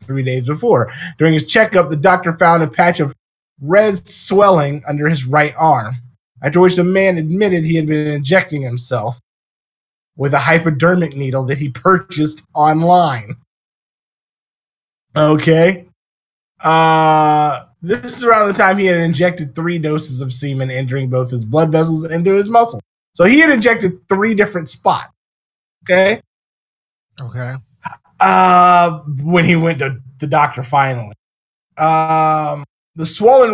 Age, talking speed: 20-39, 140 wpm